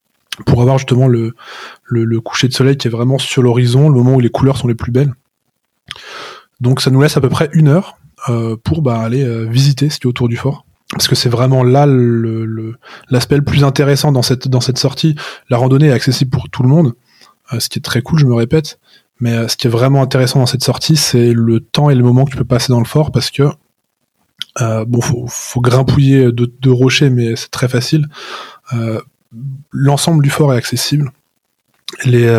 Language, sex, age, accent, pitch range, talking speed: French, male, 20-39, French, 120-140 Hz, 225 wpm